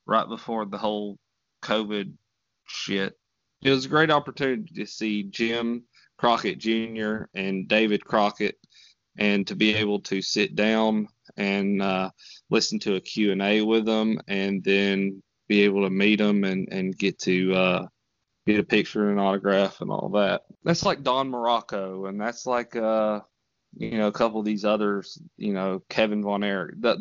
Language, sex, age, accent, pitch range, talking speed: English, male, 20-39, American, 95-110 Hz, 170 wpm